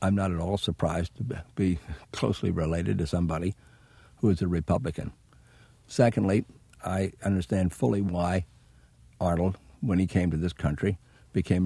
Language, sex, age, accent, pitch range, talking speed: English, male, 60-79, American, 85-105 Hz, 145 wpm